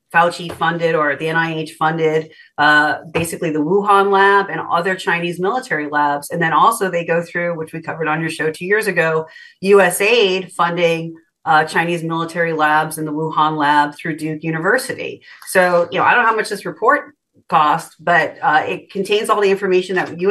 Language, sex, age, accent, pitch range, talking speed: English, female, 40-59, American, 165-210 Hz, 190 wpm